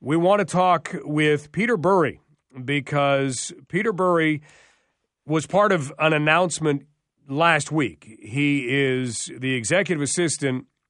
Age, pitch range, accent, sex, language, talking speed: 40-59, 130-160 Hz, American, male, English, 120 wpm